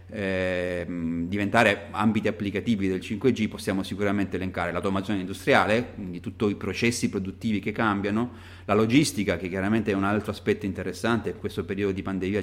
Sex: male